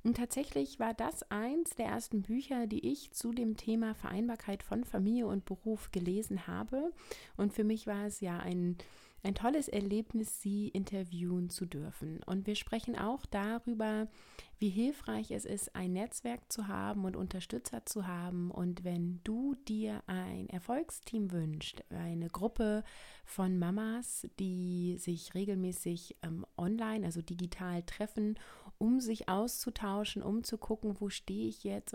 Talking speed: 150 wpm